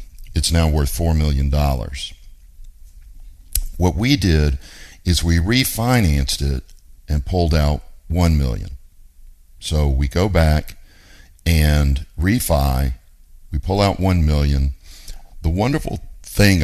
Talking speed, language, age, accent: 110 wpm, English, 50-69, American